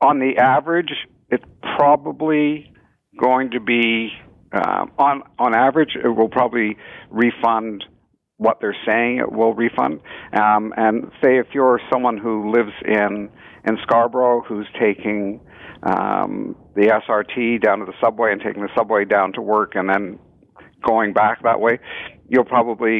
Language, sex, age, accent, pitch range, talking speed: English, male, 60-79, American, 105-120 Hz, 150 wpm